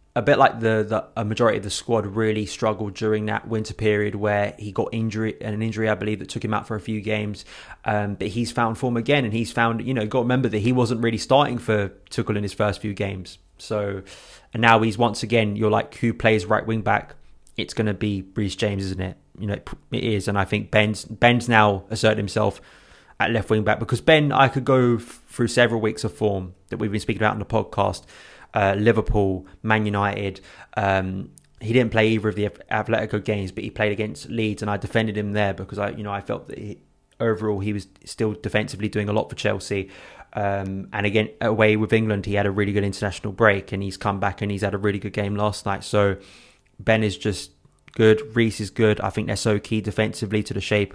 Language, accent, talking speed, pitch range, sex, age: English, British, 235 wpm, 100-110 Hz, male, 20-39